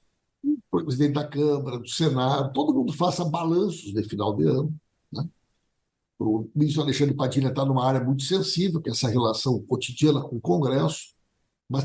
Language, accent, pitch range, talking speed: Portuguese, Brazilian, 130-170 Hz, 155 wpm